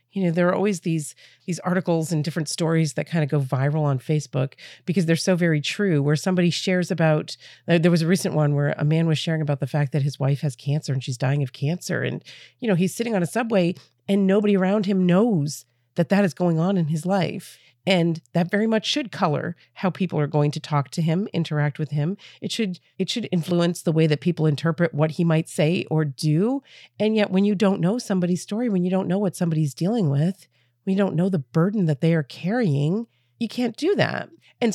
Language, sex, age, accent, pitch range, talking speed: English, female, 40-59, American, 155-200 Hz, 235 wpm